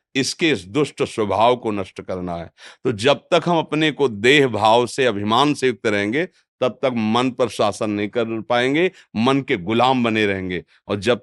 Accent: native